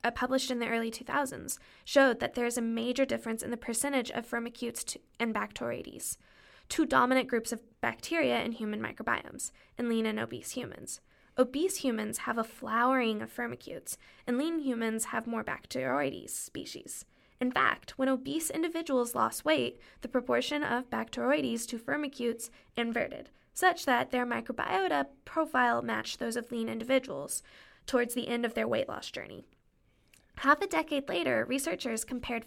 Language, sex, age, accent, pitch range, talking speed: English, female, 10-29, American, 235-295 Hz, 155 wpm